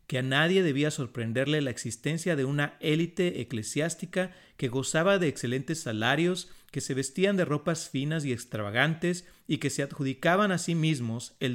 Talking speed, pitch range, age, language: 165 wpm, 125-165 Hz, 40-59, Spanish